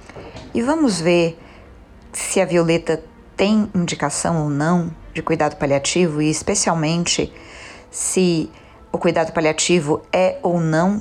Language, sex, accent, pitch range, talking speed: Portuguese, female, Brazilian, 155-185 Hz, 120 wpm